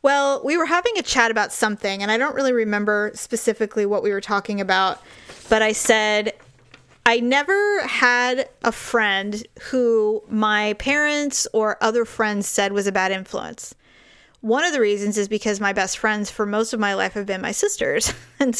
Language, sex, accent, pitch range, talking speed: English, female, American, 205-245 Hz, 185 wpm